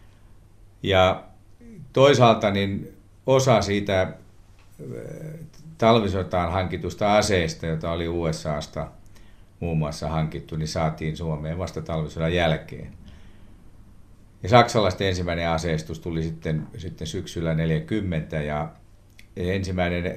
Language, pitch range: Finnish, 80-105 Hz